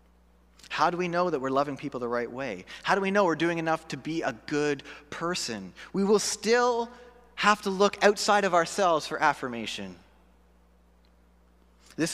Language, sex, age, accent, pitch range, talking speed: English, male, 30-49, American, 125-175 Hz, 175 wpm